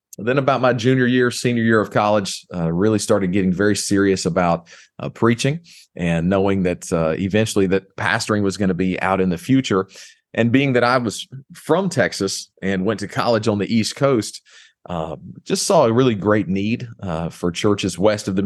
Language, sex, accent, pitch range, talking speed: English, male, American, 95-120 Hz, 200 wpm